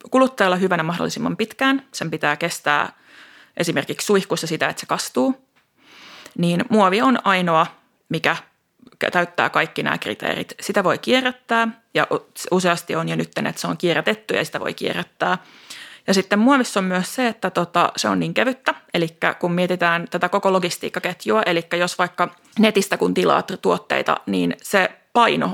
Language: Finnish